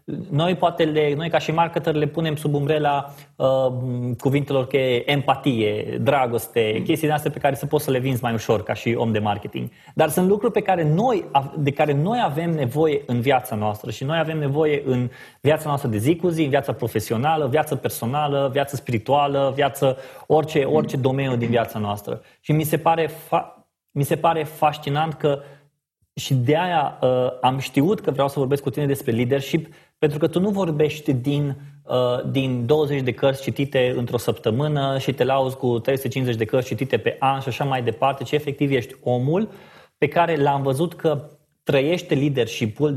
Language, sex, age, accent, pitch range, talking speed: Romanian, male, 20-39, native, 130-155 Hz, 190 wpm